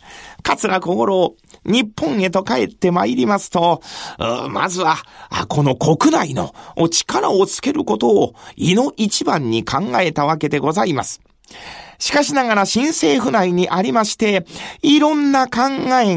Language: Japanese